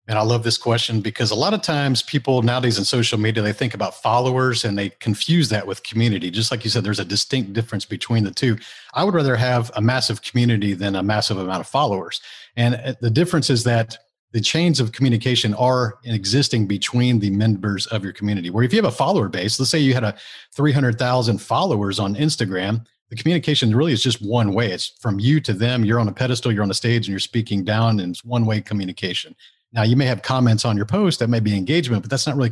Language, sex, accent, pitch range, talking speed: English, male, American, 110-130 Hz, 235 wpm